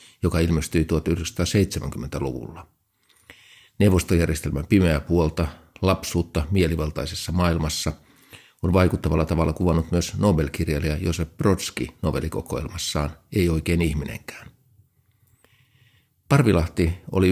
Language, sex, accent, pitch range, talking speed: Finnish, male, native, 80-95 Hz, 80 wpm